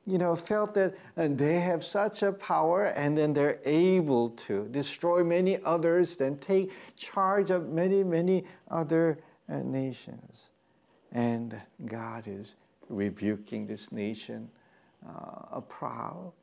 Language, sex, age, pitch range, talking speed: English, male, 60-79, 110-170 Hz, 130 wpm